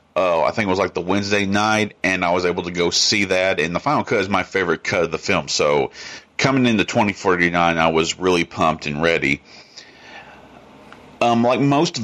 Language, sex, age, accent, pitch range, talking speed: English, male, 40-59, American, 95-120 Hz, 205 wpm